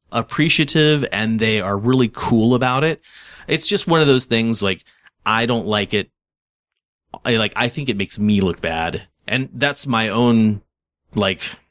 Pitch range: 100-130 Hz